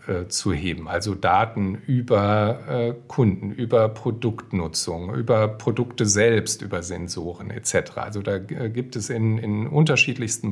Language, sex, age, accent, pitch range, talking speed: German, male, 50-69, German, 105-125 Hz, 110 wpm